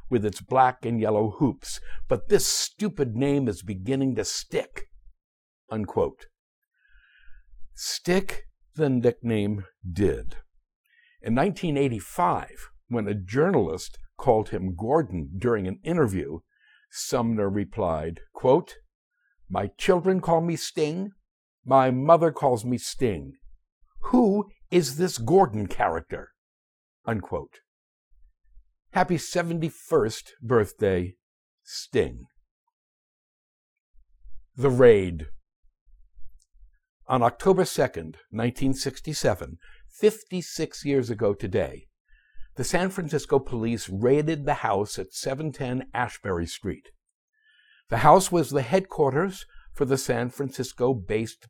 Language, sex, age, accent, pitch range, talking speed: English, male, 60-79, American, 100-165 Hz, 95 wpm